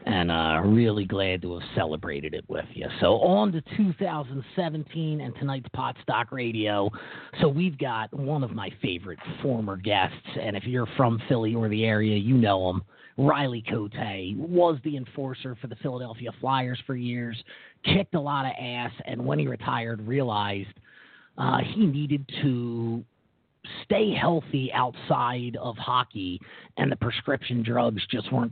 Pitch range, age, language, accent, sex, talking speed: 115-145 Hz, 30-49, English, American, male, 160 wpm